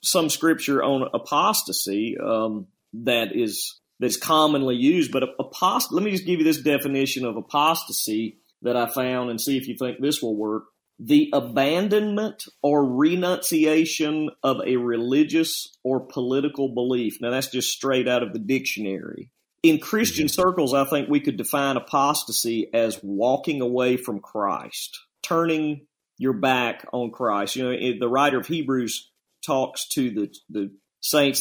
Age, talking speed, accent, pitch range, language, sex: 40-59, 155 wpm, American, 120-155 Hz, English, male